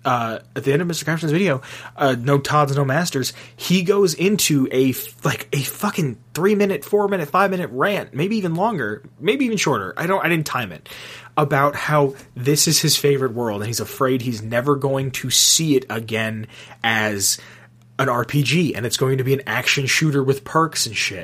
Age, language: 20-39, English